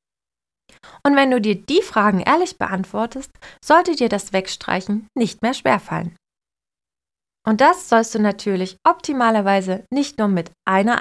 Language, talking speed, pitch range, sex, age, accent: German, 135 wpm, 195-265 Hz, female, 20-39, German